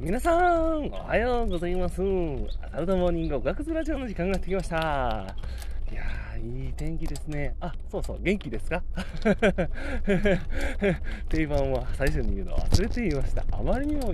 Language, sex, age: Japanese, male, 20-39